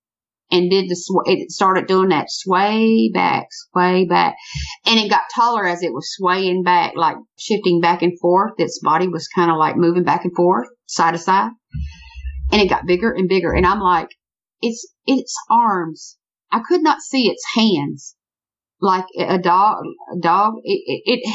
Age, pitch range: 50-69, 165-230 Hz